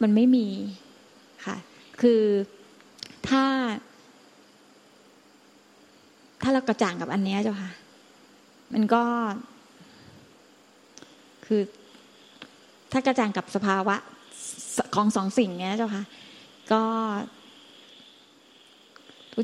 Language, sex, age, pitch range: Thai, female, 20-39, 205-245 Hz